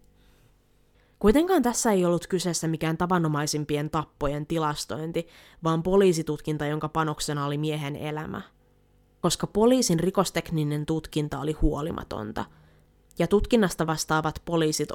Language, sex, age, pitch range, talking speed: Finnish, female, 20-39, 150-170 Hz, 105 wpm